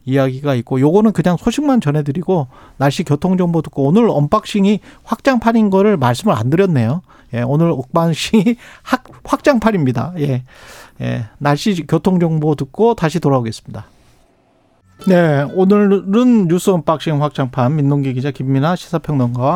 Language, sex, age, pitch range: Korean, male, 40-59, 135-195 Hz